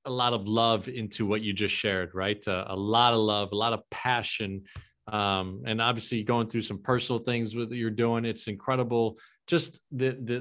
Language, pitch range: English, 110-140 Hz